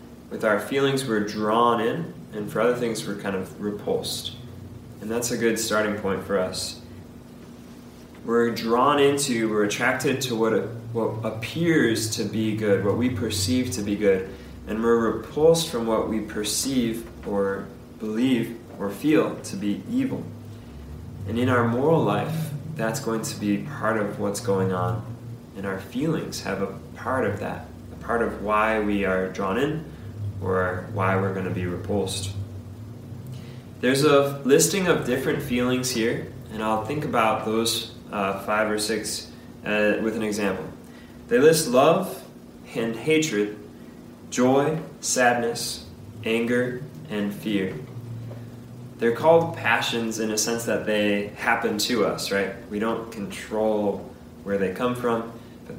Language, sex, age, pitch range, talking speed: English, male, 20-39, 100-120 Hz, 150 wpm